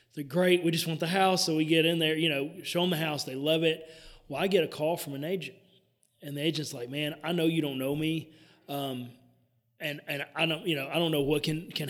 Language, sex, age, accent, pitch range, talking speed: English, male, 30-49, American, 135-165 Hz, 265 wpm